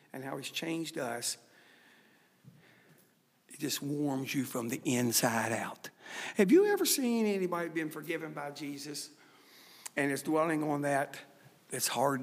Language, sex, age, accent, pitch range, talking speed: English, male, 60-79, American, 135-180 Hz, 140 wpm